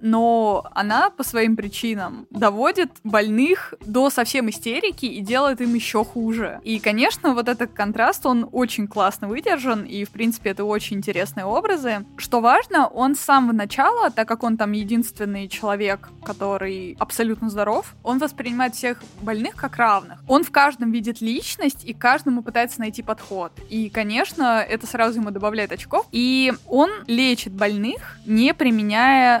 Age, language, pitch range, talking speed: 20-39, Russian, 205-250 Hz, 155 wpm